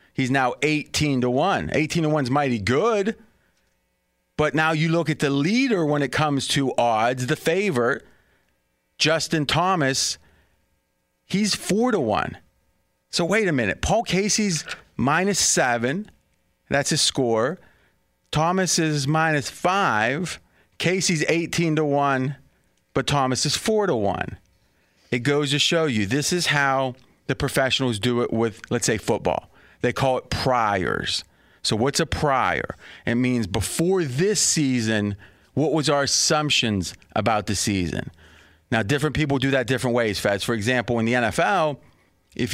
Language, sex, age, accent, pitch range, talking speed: English, male, 30-49, American, 120-155 Hz, 150 wpm